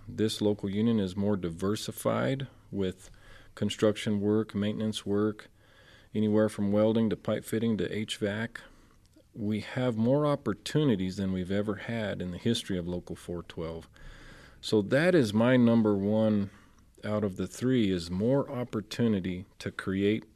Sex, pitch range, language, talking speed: male, 100-115 Hz, English, 140 wpm